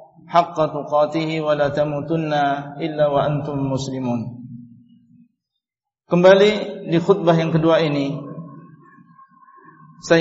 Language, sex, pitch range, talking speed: Indonesian, male, 155-180 Hz, 95 wpm